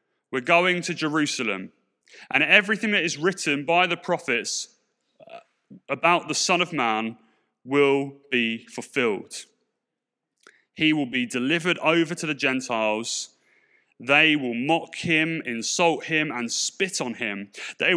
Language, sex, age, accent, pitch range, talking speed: English, male, 30-49, British, 130-195 Hz, 130 wpm